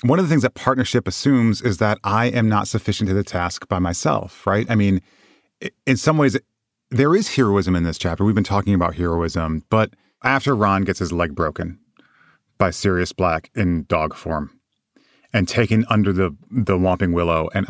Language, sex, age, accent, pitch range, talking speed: English, male, 30-49, American, 95-135 Hz, 190 wpm